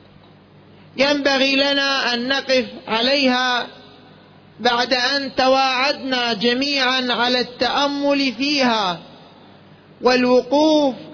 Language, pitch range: Arabic, 240-275 Hz